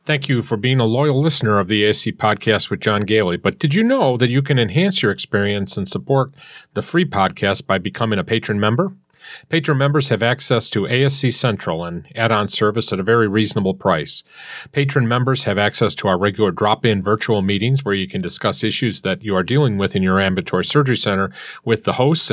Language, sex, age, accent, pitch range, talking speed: English, male, 40-59, American, 100-125 Hz, 205 wpm